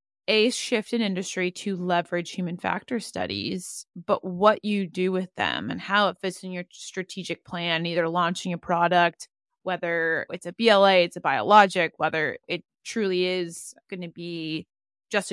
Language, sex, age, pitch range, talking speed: English, female, 20-39, 180-210 Hz, 165 wpm